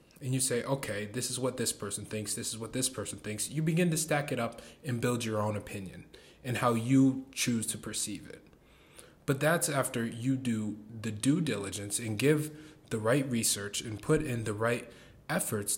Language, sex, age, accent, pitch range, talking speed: English, male, 20-39, American, 115-150 Hz, 200 wpm